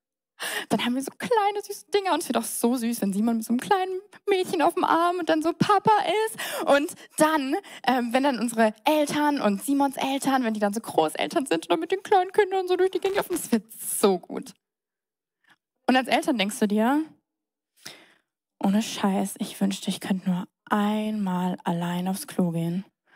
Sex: female